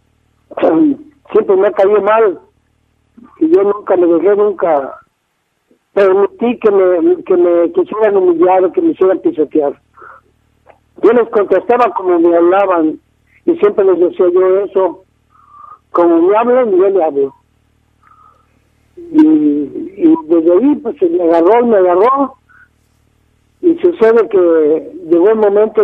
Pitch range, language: 180-295 Hz, Spanish